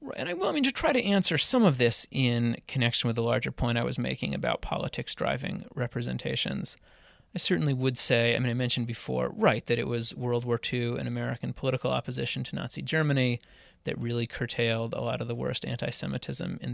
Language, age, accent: English, 30-49, American